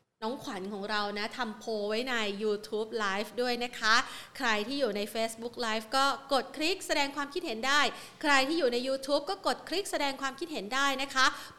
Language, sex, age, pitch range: Thai, female, 30-49, 210-285 Hz